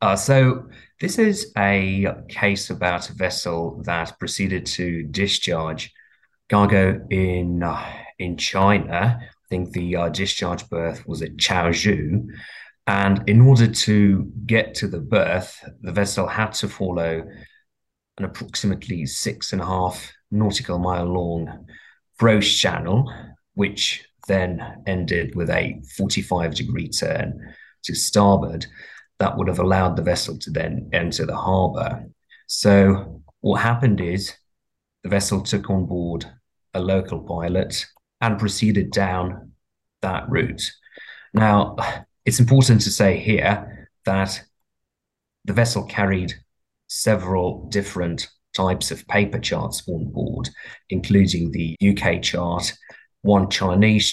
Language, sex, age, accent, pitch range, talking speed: English, male, 30-49, British, 90-105 Hz, 125 wpm